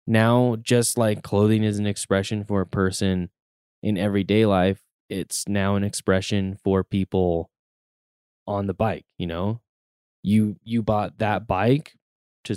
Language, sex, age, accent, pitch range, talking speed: English, male, 10-29, American, 95-115 Hz, 145 wpm